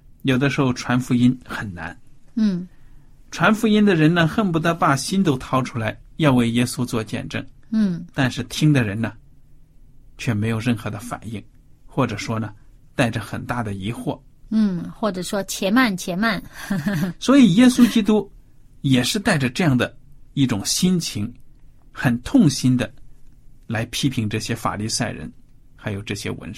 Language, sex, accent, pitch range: Chinese, male, native, 125-175 Hz